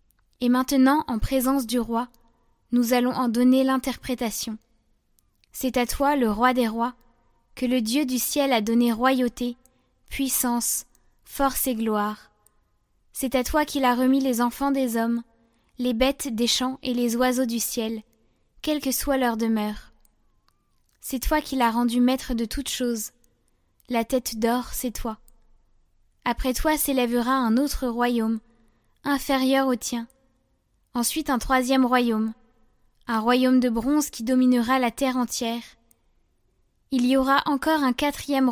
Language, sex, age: French, female, 10-29